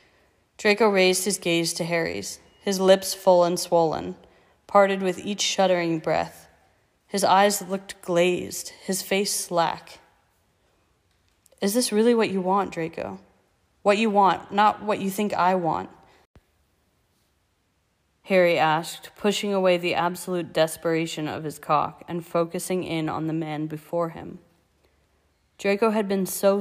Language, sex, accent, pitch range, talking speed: English, female, American, 165-195 Hz, 140 wpm